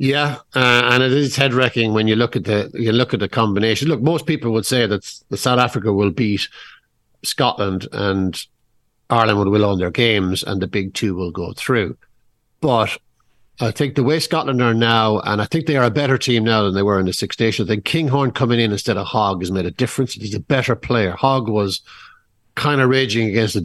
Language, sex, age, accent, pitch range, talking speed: English, male, 60-79, Irish, 105-135 Hz, 220 wpm